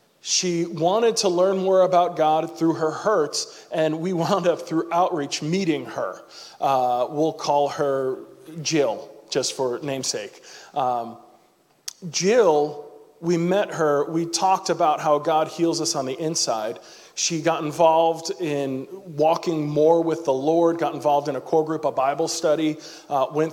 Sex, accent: male, American